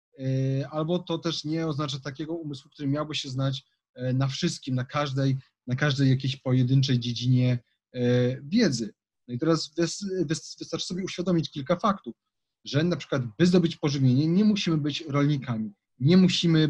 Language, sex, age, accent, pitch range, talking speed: Polish, male, 30-49, native, 125-155 Hz, 145 wpm